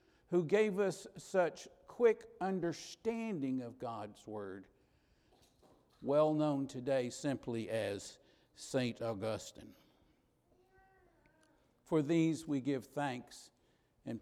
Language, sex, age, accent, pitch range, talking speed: English, male, 60-79, American, 140-185 Hz, 95 wpm